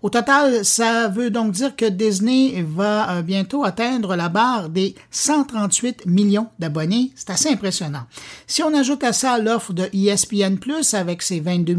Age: 50-69